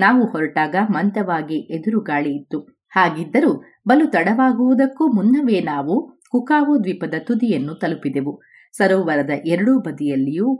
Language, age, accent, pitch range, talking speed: Kannada, 30-49, native, 155-240 Hz, 95 wpm